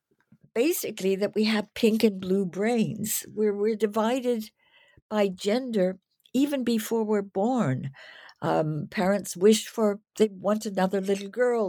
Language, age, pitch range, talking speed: English, 60-79, 180-230 Hz, 135 wpm